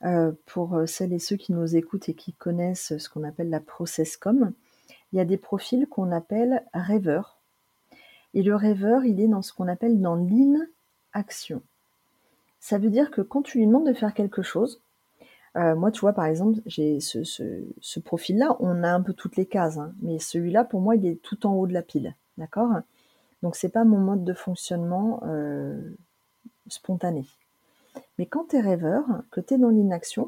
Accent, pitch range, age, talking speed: French, 175-240 Hz, 40-59, 200 wpm